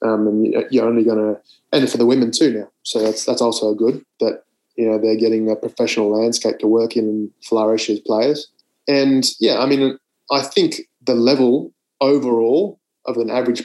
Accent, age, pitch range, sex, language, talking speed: Australian, 20-39, 110-125 Hz, male, English, 200 wpm